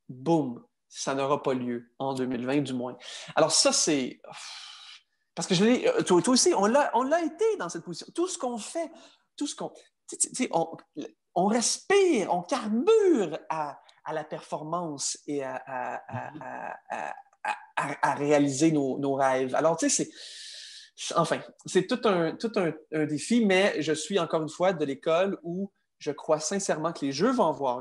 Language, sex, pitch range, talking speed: English, male, 140-230 Hz, 190 wpm